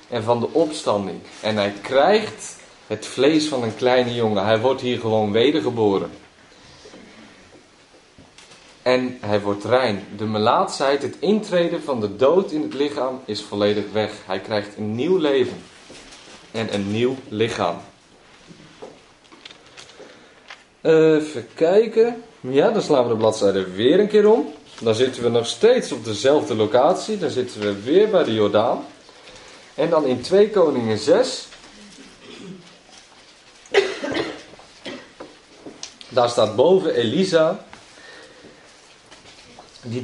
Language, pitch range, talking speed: Dutch, 110-155 Hz, 125 wpm